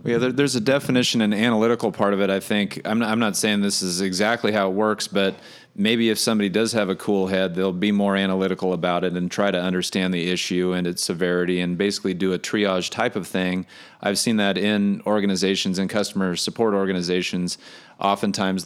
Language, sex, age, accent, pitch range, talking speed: English, male, 30-49, American, 95-110 Hz, 210 wpm